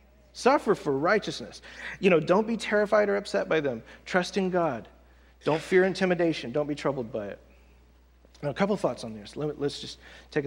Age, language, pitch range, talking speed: 40-59, English, 130-195 Hz, 185 wpm